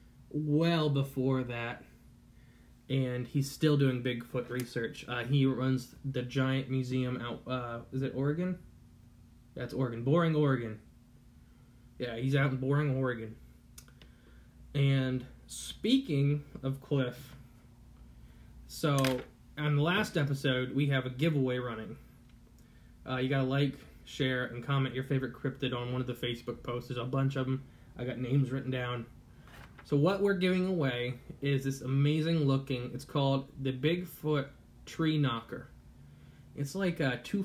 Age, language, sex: 20-39, English, male